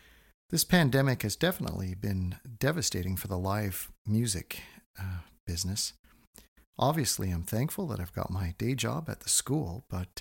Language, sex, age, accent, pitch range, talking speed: English, male, 50-69, American, 90-125 Hz, 145 wpm